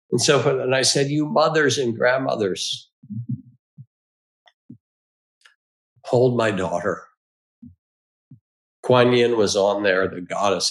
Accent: American